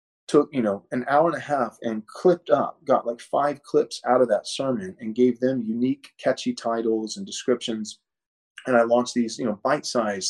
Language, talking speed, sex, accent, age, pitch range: English, 205 wpm, male, American, 30-49, 115-140 Hz